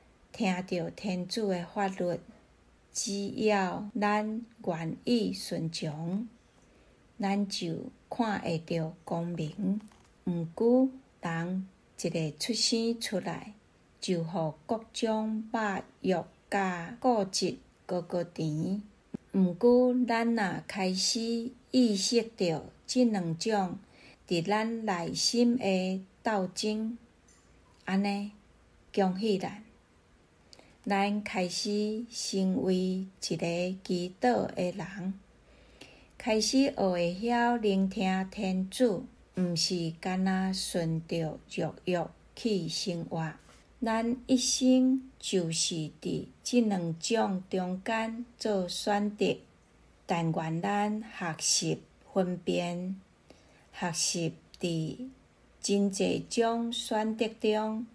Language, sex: Chinese, female